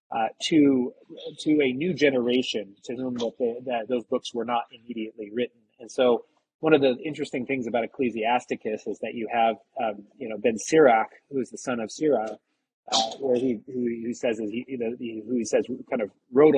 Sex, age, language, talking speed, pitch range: male, 30-49, English, 205 wpm, 110-130 Hz